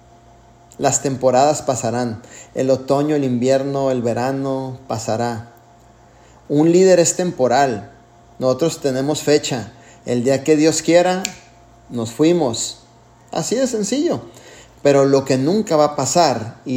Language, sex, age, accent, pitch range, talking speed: Spanish, male, 30-49, Mexican, 120-160 Hz, 125 wpm